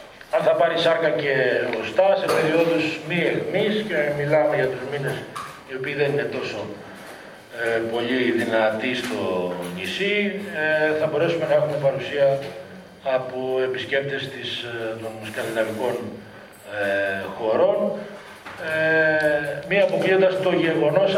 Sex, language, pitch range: male, Greek, 125-165 Hz